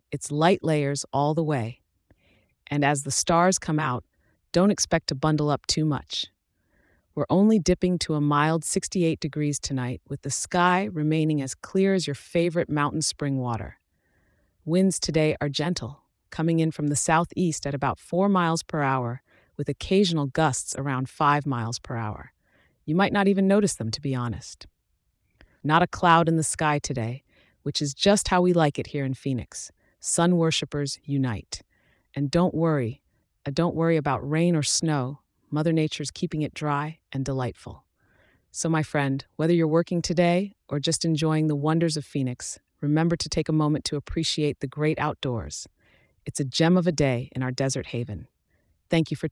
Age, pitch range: 30-49, 130-165 Hz